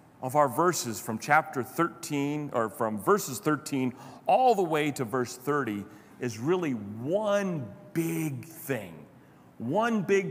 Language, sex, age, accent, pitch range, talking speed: English, male, 40-59, American, 125-170 Hz, 135 wpm